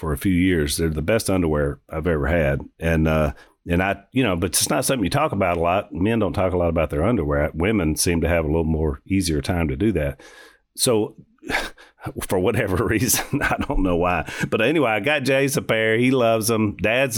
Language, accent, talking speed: English, American, 225 wpm